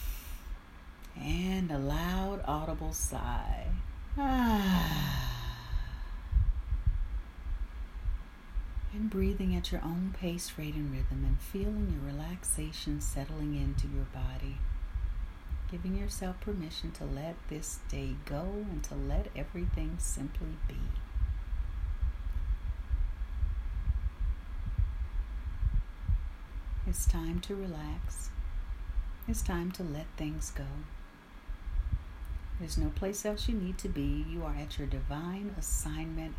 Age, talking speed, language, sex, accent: 60-79, 100 wpm, English, female, American